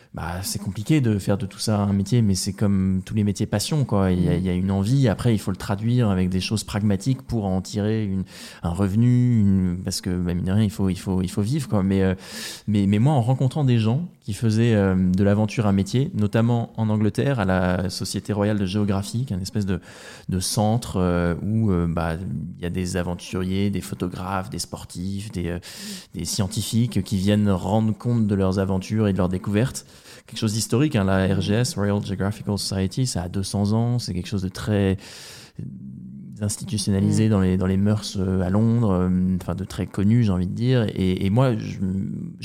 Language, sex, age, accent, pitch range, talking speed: French, male, 20-39, French, 95-115 Hz, 210 wpm